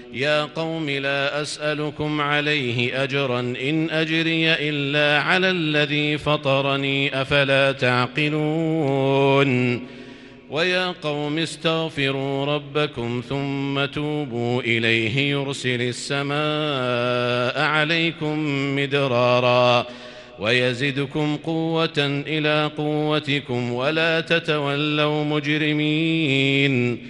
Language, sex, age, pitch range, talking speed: Arabic, male, 50-69, 135-150 Hz, 70 wpm